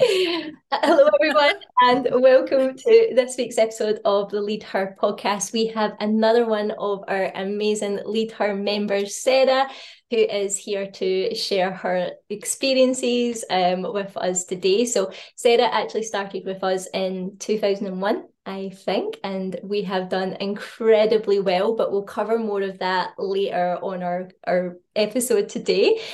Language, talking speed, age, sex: English, 145 wpm, 20-39, female